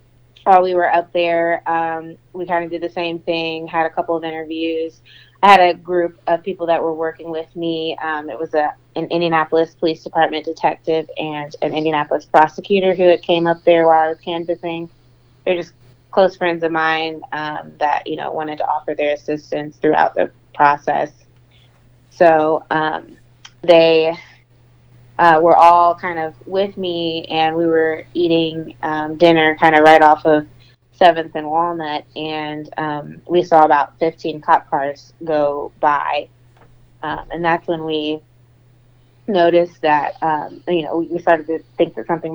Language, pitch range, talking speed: English, 150-170 Hz, 170 wpm